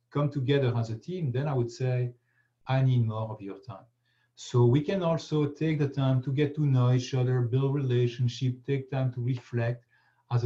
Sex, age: male, 40-59